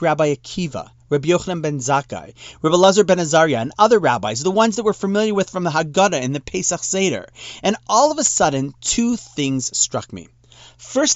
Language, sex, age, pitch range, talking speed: English, male, 30-49, 130-200 Hz, 195 wpm